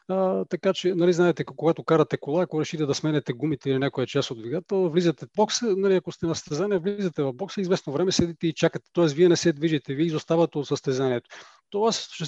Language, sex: Bulgarian, male